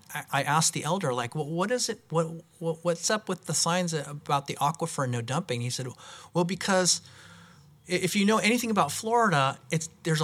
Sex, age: male, 40-59